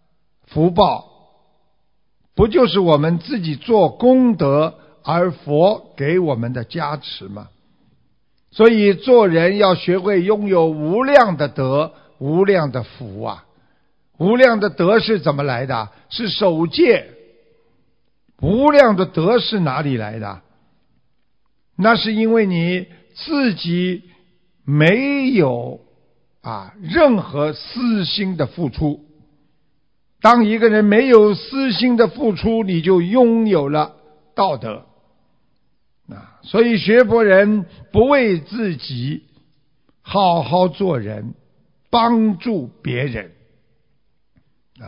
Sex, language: male, Chinese